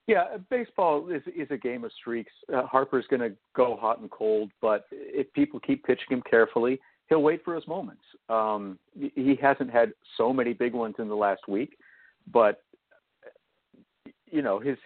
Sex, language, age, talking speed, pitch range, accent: male, English, 50-69, 180 wpm, 110-145 Hz, American